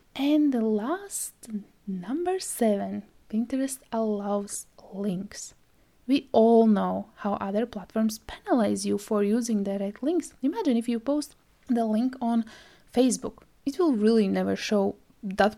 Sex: female